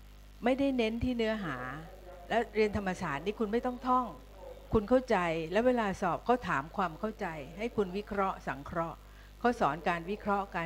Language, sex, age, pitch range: Thai, female, 60-79, 170-225 Hz